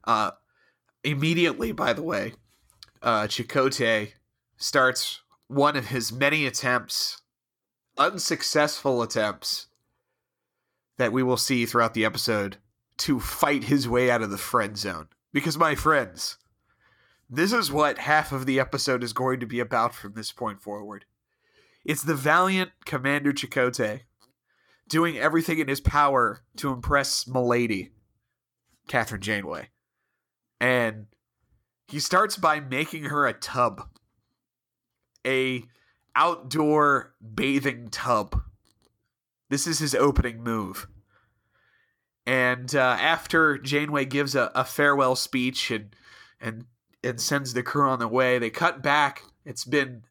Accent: American